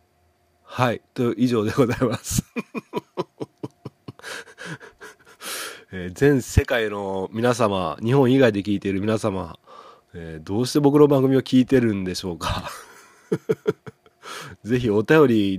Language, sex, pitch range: Japanese, male, 95-130 Hz